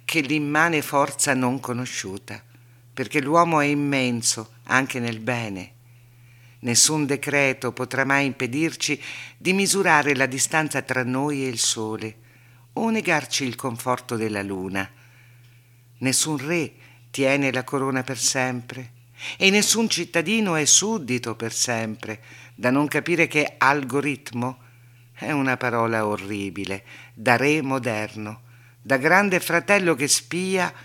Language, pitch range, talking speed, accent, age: Italian, 120-150 Hz, 125 wpm, native, 50-69